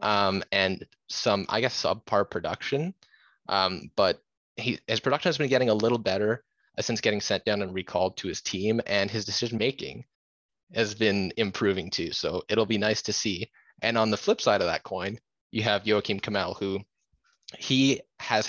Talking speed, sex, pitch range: 180 wpm, male, 100-135 Hz